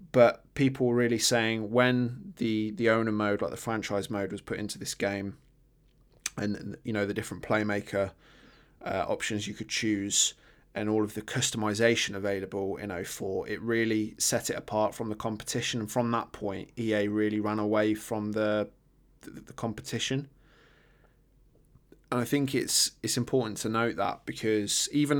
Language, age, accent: English, 20-39, British